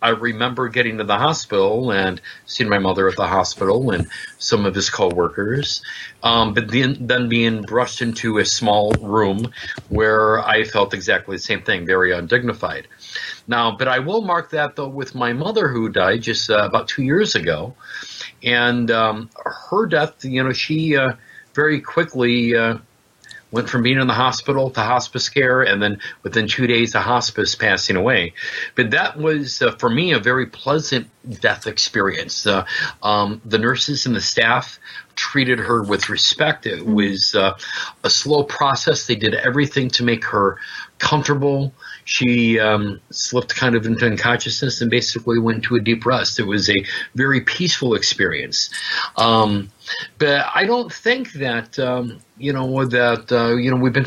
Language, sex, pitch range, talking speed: English, male, 115-135 Hz, 170 wpm